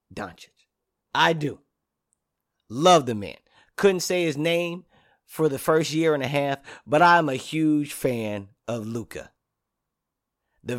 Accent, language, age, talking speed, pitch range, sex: American, English, 40-59, 140 wpm, 115-155 Hz, male